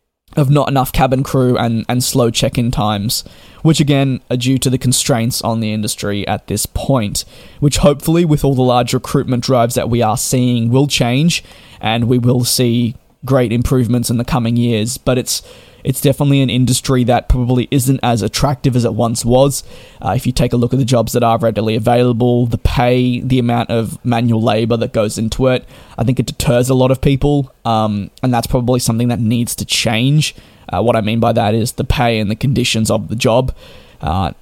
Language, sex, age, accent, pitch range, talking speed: English, male, 20-39, Australian, 115-130 Hz, 205 wpm